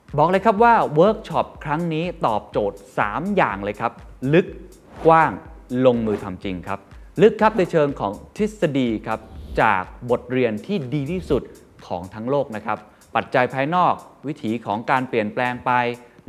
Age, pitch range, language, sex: 20-39, 105-155 Hz, Thai, male